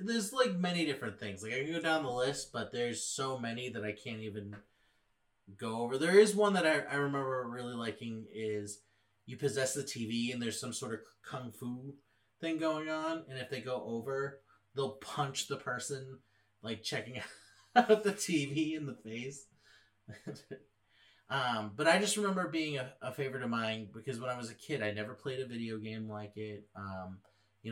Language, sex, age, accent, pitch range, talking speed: English, male, 30-49, American, 105-150 Hz, 195 wpm